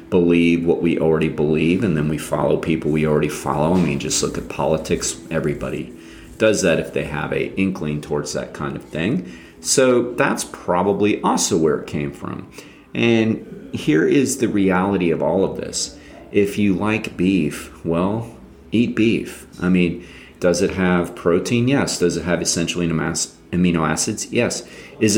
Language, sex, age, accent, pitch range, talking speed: English, male, 30-49, American, 80-105 Hz, 170 wpm